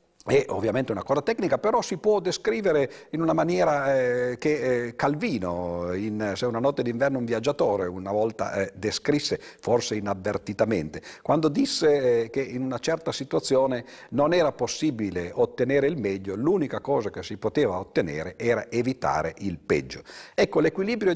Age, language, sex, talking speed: 50-69, Italian, male, 155 wpm